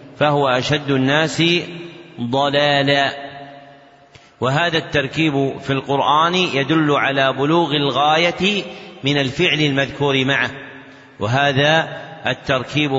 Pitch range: 135-150 Hz